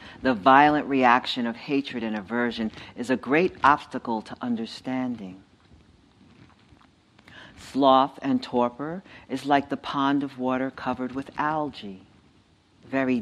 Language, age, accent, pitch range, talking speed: English, 50-69, American, 110-140 Hz, 120 wpm